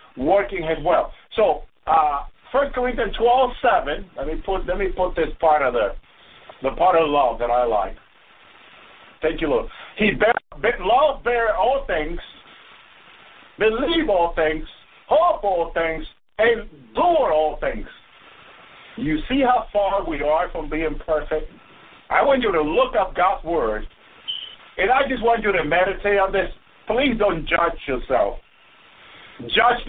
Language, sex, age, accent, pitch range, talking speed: English, male, 50-69, American, 165-240 Hz, 155 wpm